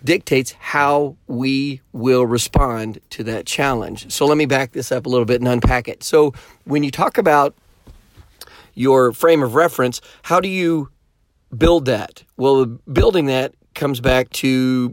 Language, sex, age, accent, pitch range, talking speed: English, male, 40-59, American, 115-135 Hz, 160 wpm